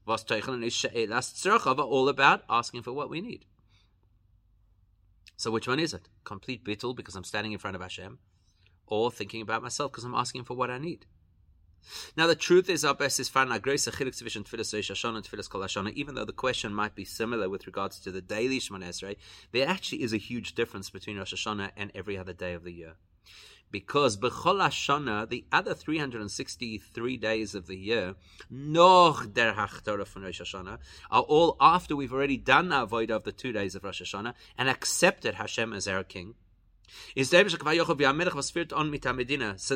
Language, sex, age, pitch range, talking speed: English, male, 30-49, 95-140 Hz, 150 wpm